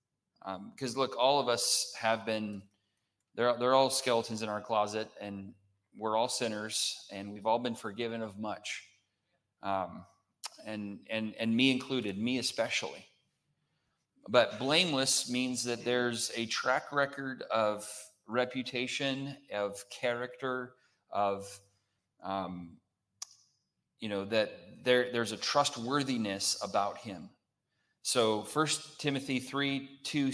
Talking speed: 120 wpm